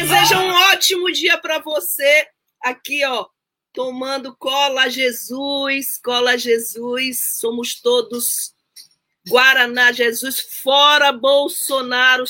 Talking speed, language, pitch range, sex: 105 wpm, Portuguese, 215-280 Hz, female